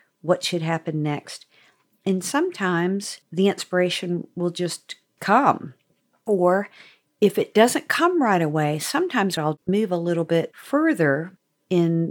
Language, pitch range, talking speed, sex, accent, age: English, 155-185 Hz, 130 wpm, female, American, 50-69